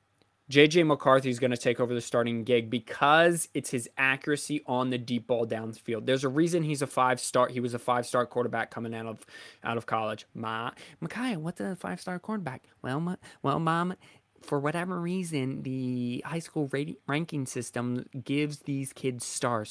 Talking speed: 190 wpm